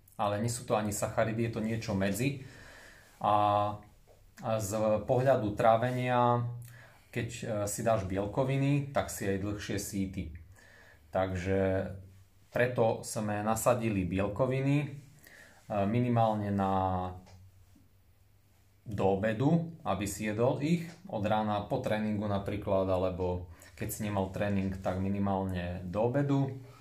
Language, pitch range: Slovak, 95-120 Hz